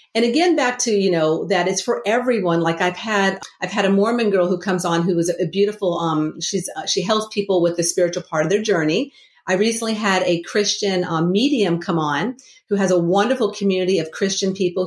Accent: American